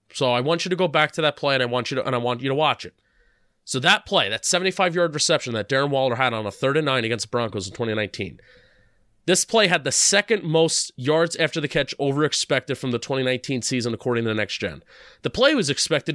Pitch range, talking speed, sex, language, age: 130-180 Hz, 250 wpm, male, English, 30-49